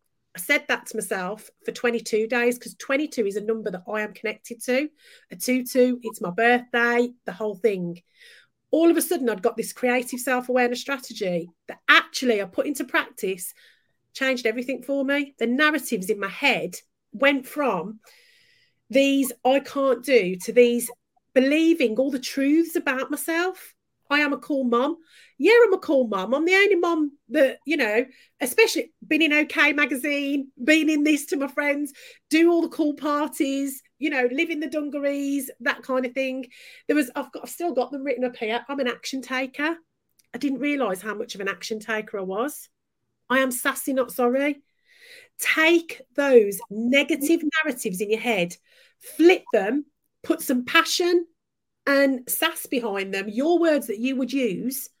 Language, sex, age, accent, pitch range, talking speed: English, female, 40-59, British, 235-305 Hz, 180 wpm